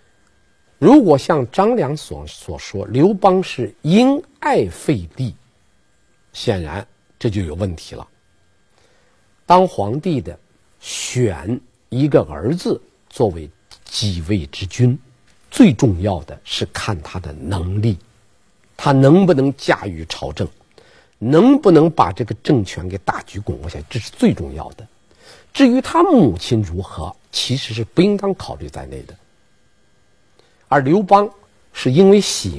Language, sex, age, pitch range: Chinese, male, 50-69, 95-145 Hz